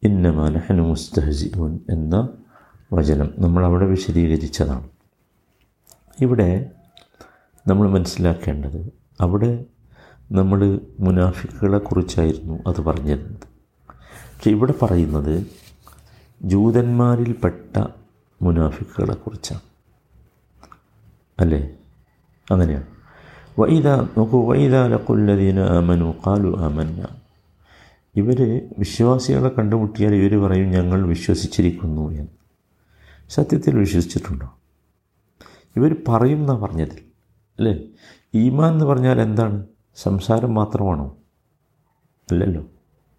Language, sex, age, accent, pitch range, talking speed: Malayalam, male, 50-69, native, 80-115 Hz, 70 wpm